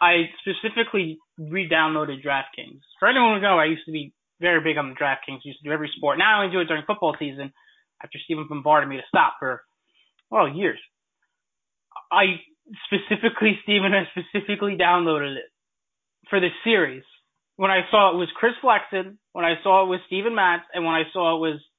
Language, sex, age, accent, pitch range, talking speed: English, male, 20-39, American, 160-230 Hz, 195 wpm